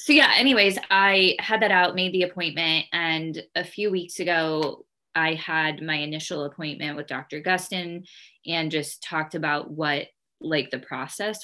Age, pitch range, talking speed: 20-39, 145-180 Hz, 165 wpm